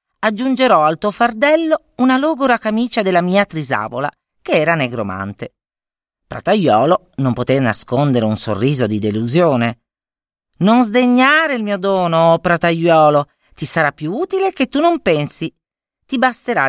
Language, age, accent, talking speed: Italian, 40-59, native, 135 wpm